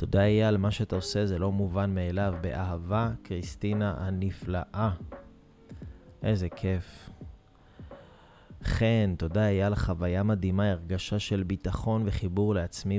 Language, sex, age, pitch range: Hebrew, male, 30-49, 90-105 Hz